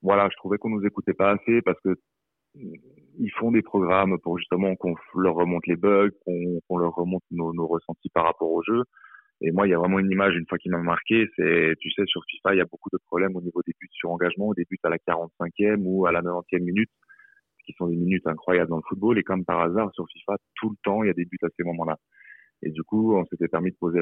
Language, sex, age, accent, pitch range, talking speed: French, male, 30-49, French, 85-100 Hz, 265 wpm